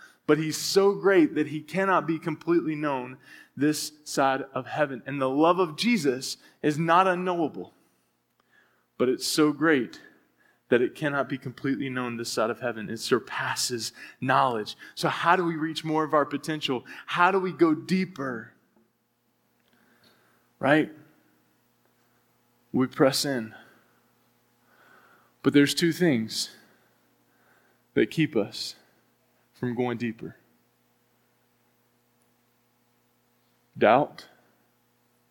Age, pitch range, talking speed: 20-39, 115-150 Hz, 115 wpm